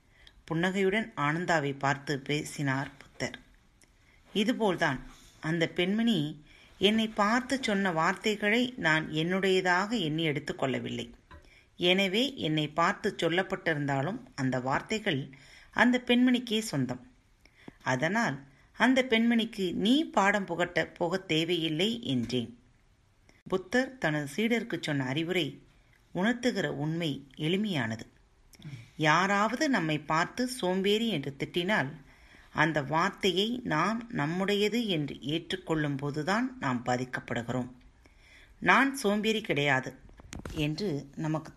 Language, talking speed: Tamil, 90 wpm